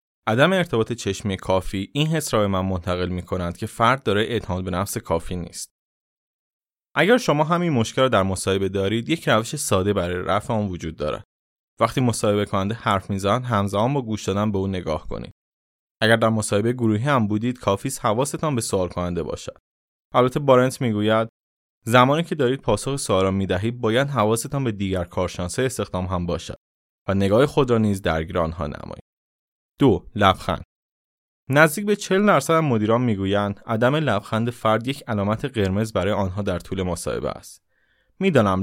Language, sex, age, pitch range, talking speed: Persian, male, 20-39, 95-125 Hz, 165 wpm